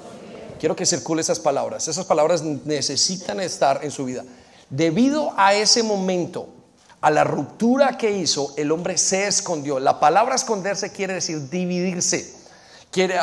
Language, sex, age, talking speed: Spanish, male, 40-59, 145 wpm